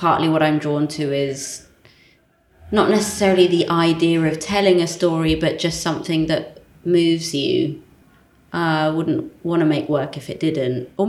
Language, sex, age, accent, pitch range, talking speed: English, female, 20-39, British, 155-185 Hz, 160 wpm